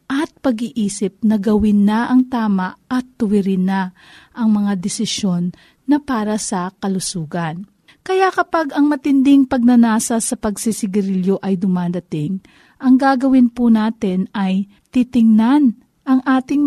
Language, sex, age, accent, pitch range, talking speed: Filipino, female, 50-69, native, 220-290 Hz, 120 wpm